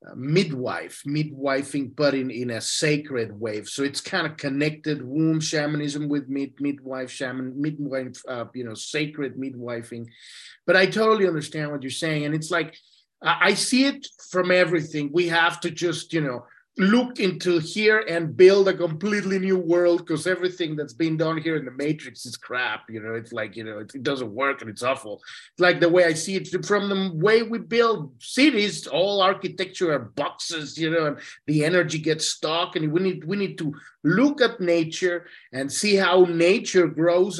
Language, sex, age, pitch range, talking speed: English, male, 30-49, 145-190 Hz, 190 wpm